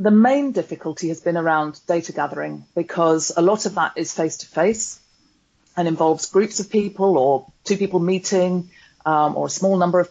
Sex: female